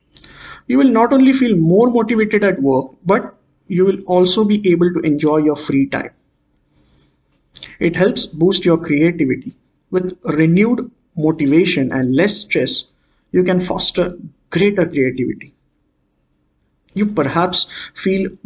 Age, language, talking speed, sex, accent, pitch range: 50-69, English, 125 wpm, male, Indian, 155-210 Hz